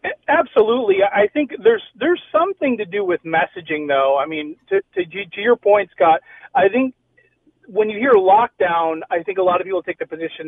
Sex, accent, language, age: male, American, English, 40-59